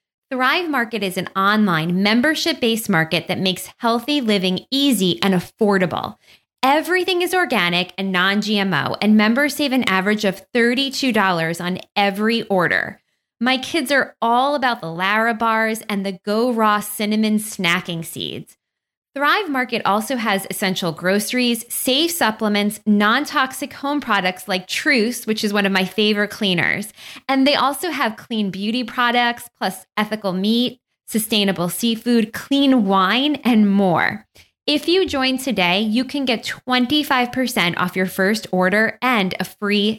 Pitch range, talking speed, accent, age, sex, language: 195-255 Hz, 145 wpm, American, 20-39, female, English